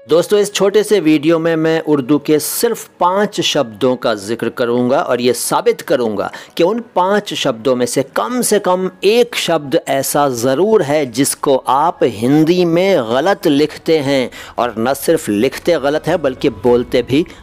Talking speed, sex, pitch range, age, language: 170 wpm, male, 125-170 Hz, 50-69, Hindi